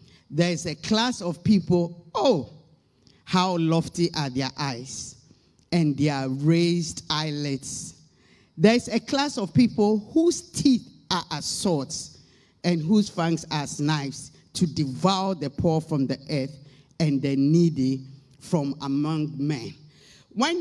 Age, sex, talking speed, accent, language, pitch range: 50-69, male, 130 wpm, Nigerian, English, 155-200 Hz